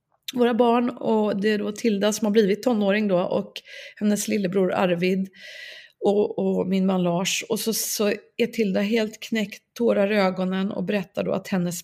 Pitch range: 190-230 Hz